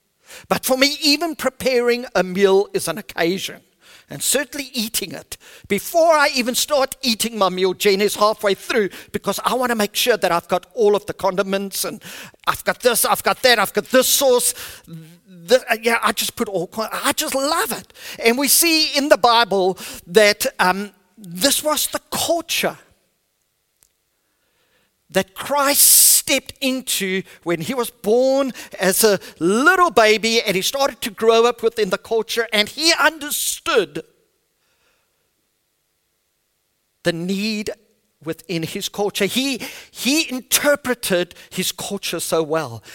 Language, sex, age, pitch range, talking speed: English, male, 50-69, 190-260 Hz, 150 wpm